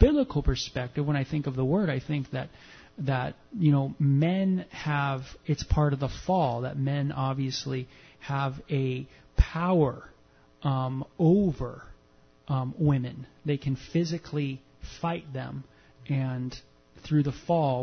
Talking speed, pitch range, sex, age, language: 135 wpm, 130-150 Hz, male, 30-49, English